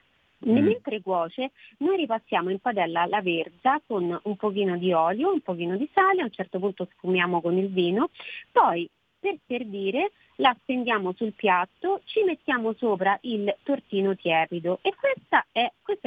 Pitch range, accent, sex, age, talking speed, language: 185-265 Hz, native, female, 30-49, 155 wpm, Italian